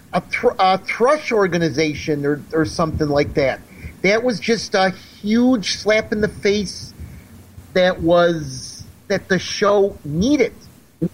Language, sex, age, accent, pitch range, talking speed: English, male, 50-69, American, 160-205 Hz, 120 wpm